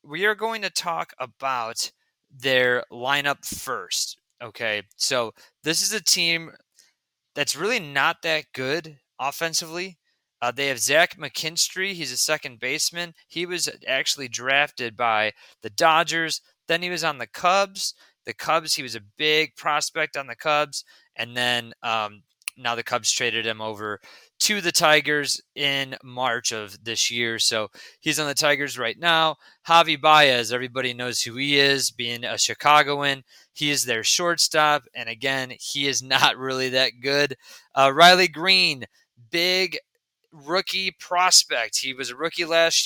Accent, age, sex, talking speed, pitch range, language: American, 20-39, male, 155 wpm, 125-160 Hz, English